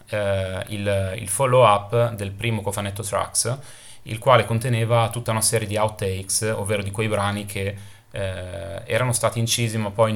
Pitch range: 100-120 Hz